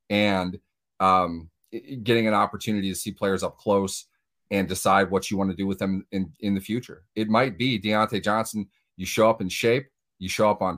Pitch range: 90-110 Hz